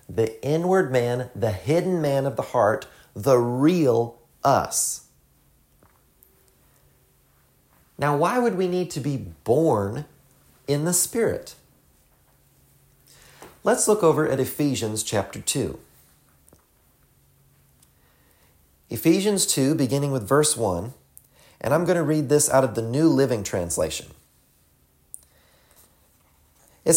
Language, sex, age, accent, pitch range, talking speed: English, male, 40-59, American, 100-155 Hz, 110 wpm